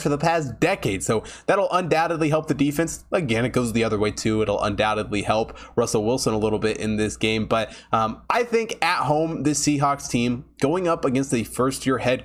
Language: English